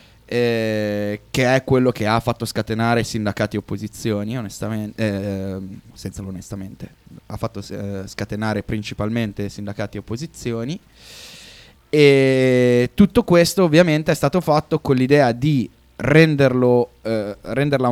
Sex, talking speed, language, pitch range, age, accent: male, 115 wpm, Italian, 105-125 Hz, 20-39, native